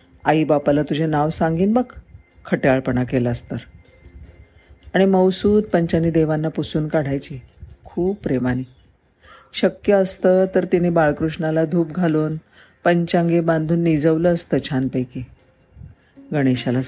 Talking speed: 105 wpm